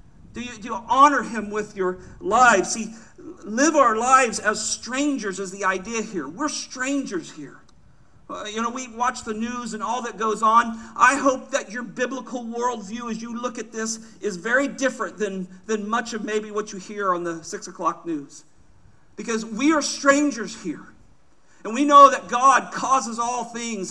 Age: 50-69